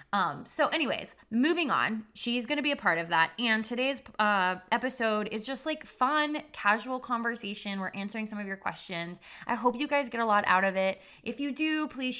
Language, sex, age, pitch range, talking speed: English, female, 20-39, 185-260 Hz, 210 wpm